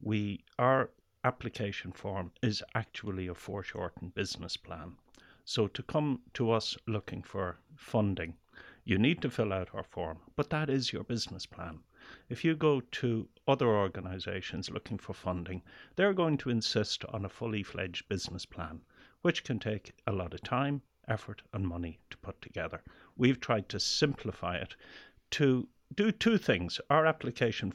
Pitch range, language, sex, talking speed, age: 95-130 Hz, English, male, 160 wpm, 60-79